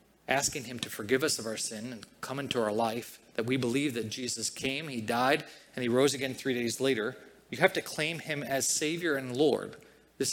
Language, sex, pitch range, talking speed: English, male, 135-170 Hz, 220 wpm